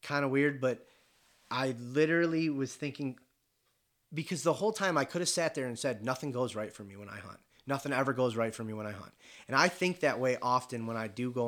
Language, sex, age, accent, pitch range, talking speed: English, male, 30-49, American, 120-155 Hz, 240 wpm